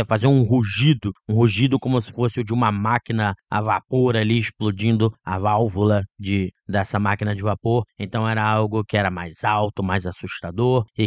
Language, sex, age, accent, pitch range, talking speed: Portuguese, male, 20-39, Brazilian, 105-125 Hz, 180 wpm